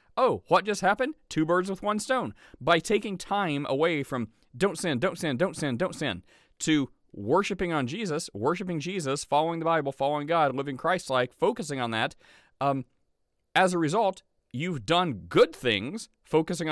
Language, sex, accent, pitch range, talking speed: English, male, American, 150-190 Hz, 170 wpm